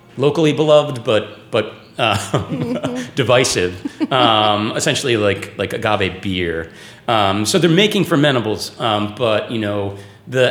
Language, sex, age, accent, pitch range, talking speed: English, male, 30-49, American, 100-125 Hz, 125 wpm